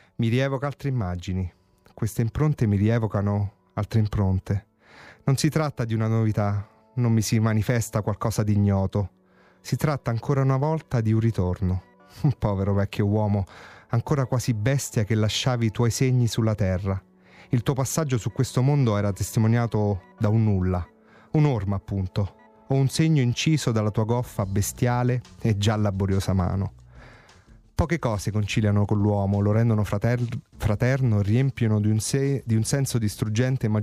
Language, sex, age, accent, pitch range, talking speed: English, male, 30-49, Italian, 100-120 Hz, 155 wpm